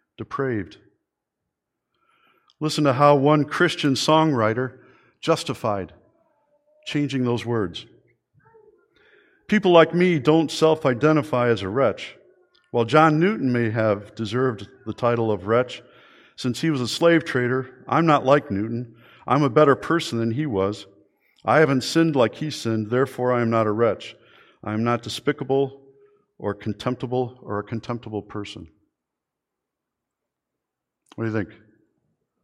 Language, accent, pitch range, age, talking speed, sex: English, American, 110-150 Hz, 50-69, 135 wpm, male